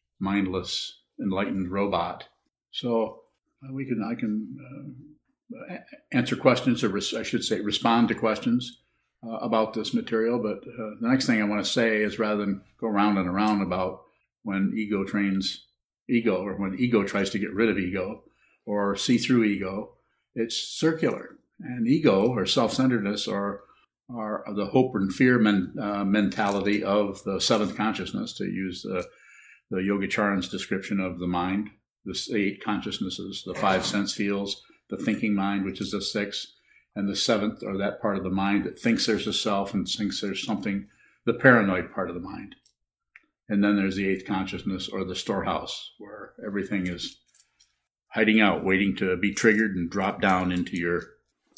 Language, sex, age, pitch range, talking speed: English, male, 50-69, 95-115 Hz, 175 wpm